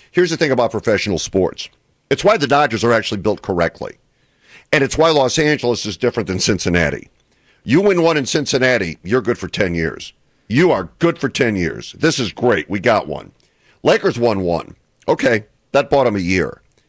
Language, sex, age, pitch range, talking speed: English, male, 50-69, 110-145 Hz, 190 wpm